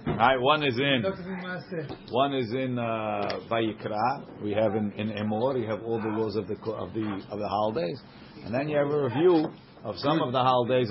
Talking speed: 195 wpm